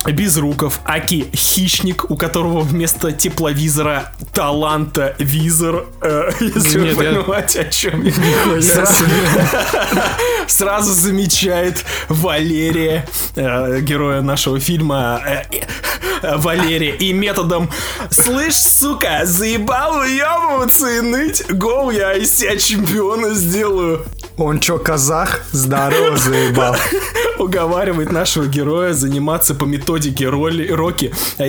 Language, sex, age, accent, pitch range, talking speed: Russian, male, 20-39, native, 145-180 Hz, 85 wpm